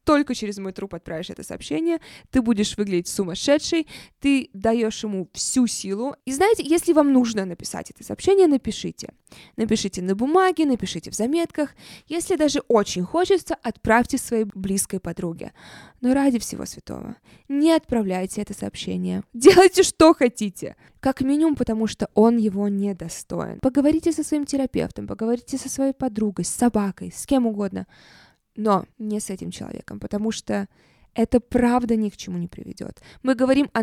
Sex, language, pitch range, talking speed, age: female, Russian, 200-270 Hz, 155 wpm, 20-39